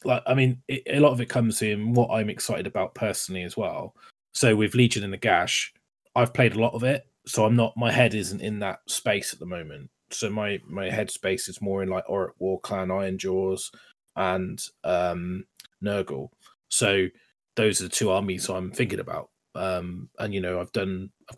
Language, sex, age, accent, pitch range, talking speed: English, male, 20-39, British, 95-110 Hz, 210 wpm